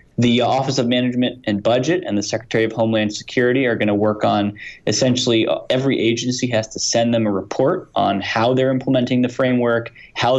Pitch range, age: 105-125 Hz, 20-39